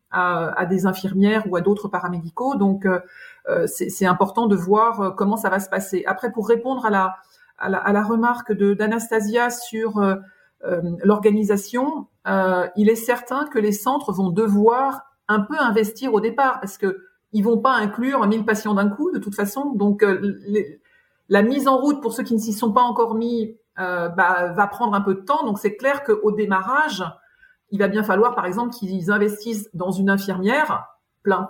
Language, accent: French, French